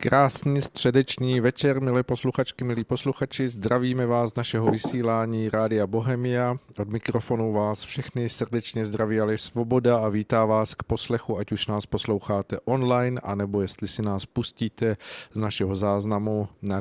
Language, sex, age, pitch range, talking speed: Czech, male, 40-59, 105-125 Hz, 145 wpm